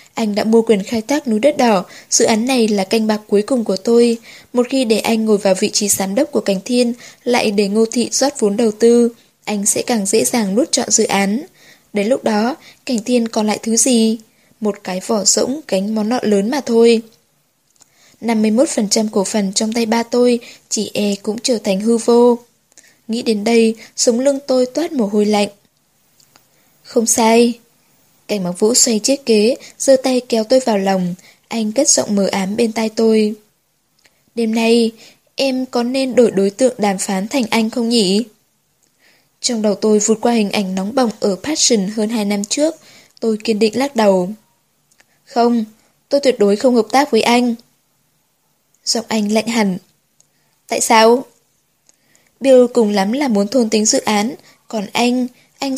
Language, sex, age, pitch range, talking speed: Vietnamese, female, 10-29, 210-245 Hz, 190 wpm